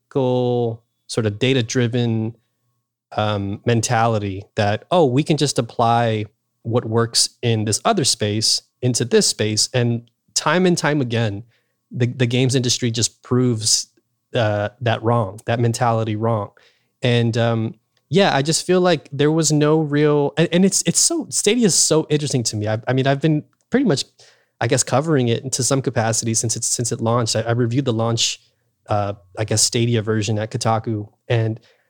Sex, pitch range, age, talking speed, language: male, 115-140 Hz, 20-39, 170 wpm, English